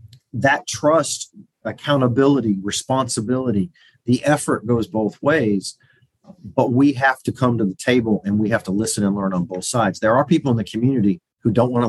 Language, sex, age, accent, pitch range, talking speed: English, male, 40-59, American, 105-130 Hz, 185 wpm